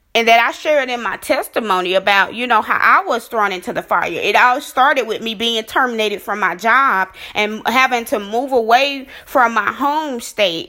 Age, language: 20-39, English